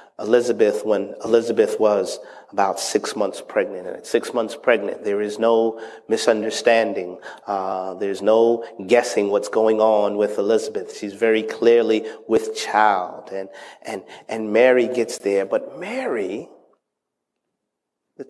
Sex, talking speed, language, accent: male, 130 wpm, English, American